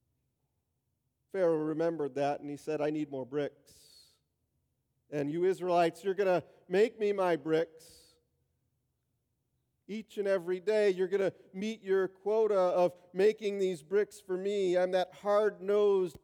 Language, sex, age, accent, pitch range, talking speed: English, male, 40-59, American, 150-195 Hz, 145 wpm